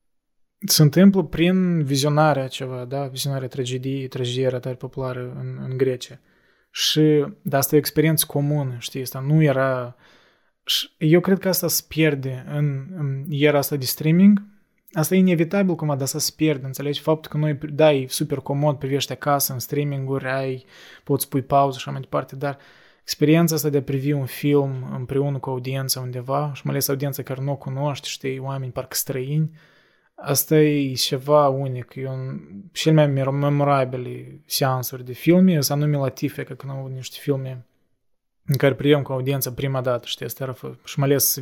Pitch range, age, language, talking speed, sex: 130-150 Hz, 20-39, Romanian, 180 wpm, male